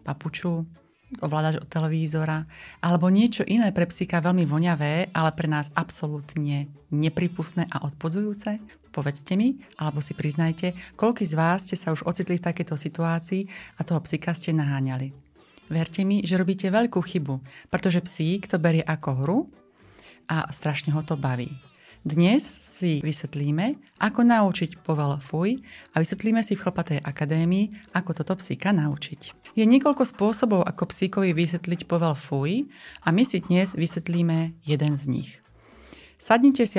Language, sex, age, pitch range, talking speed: Slovak, female, 30-49, 155-200 Hz, 145 wpm